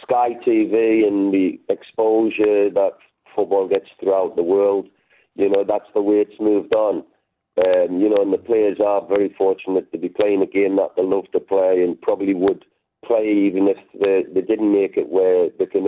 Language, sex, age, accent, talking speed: English, male, 40-59, British, 195 wpm